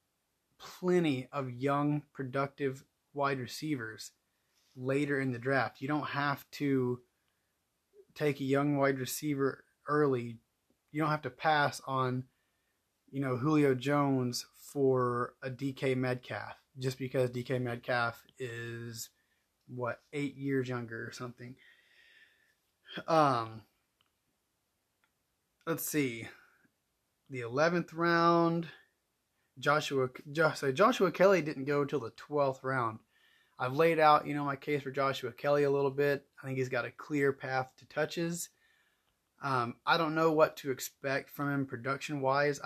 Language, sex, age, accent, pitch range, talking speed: English, male, 30-49, American, 130-150 Hz, 130 wpm